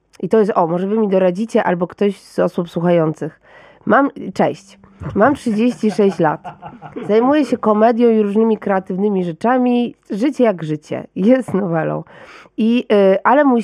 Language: Polish